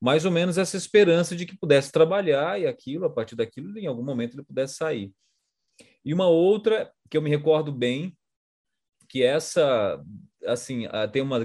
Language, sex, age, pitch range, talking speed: Portuguese, male, 20-39, 105-145 Hz, 175 wpm